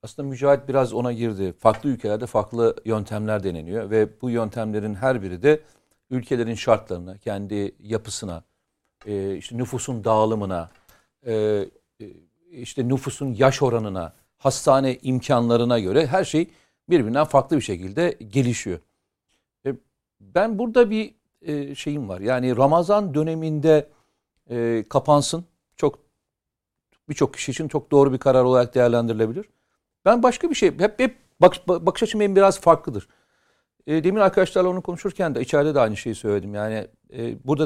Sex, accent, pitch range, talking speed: male, native, 110-180 Hz, 125 wpm